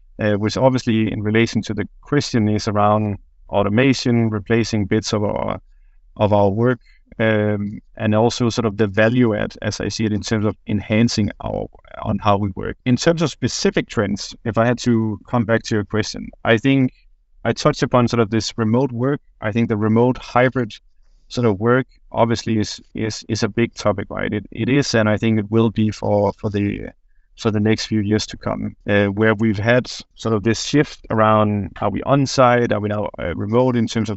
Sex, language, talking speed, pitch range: male, English, 210 wpm, 105-120 Hz